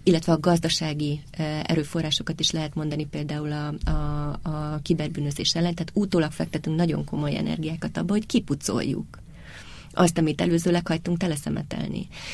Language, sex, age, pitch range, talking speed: Hungarian, female, 30-49, 145-170 Hz, 130 wpm